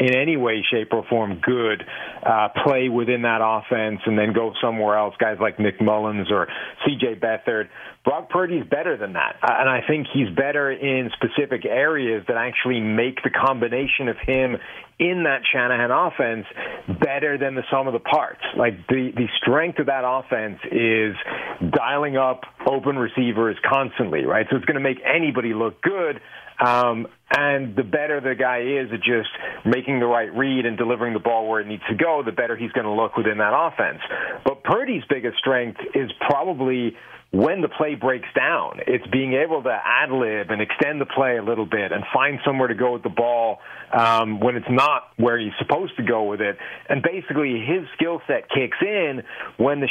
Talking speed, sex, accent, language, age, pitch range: 190 wpm, male, American, English, 40-59, 115-135 Hz